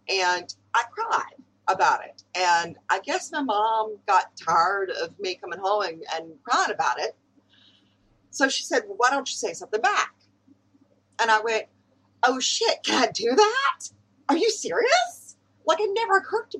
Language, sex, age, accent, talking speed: English, female, 40-59, American, 170 wpm